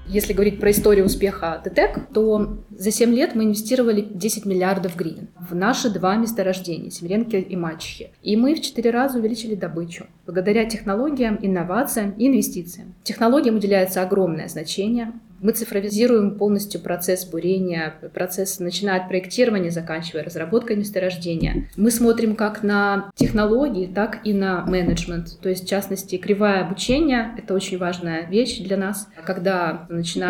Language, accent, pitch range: Ukrainian, native, 180-220 Hz